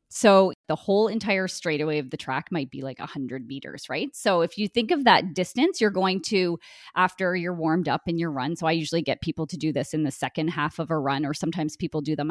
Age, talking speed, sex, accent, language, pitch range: 20-39, 250 wpm, female, American, English, 155-190 Hz